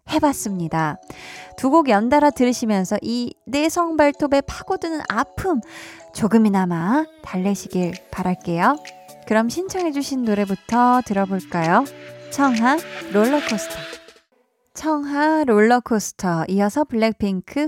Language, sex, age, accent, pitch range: Korean, female, 20-39, native, 190-295 Hz